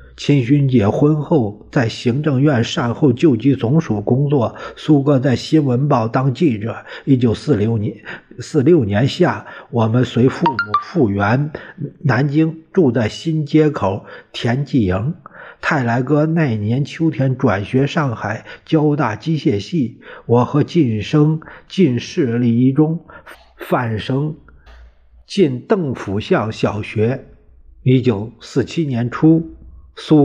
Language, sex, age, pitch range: Chinese, male, 50-69, 110-150 Hz